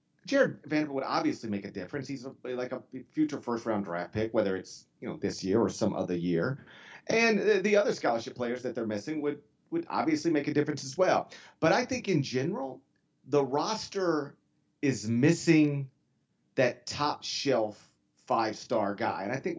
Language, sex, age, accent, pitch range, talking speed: English, male, 40-59, American, 125-175 Hz, 180 wpm